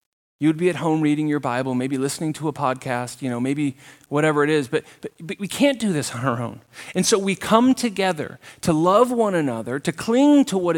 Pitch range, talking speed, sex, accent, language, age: 170-230 Hz, 230 wpm, male, American, English, 30-49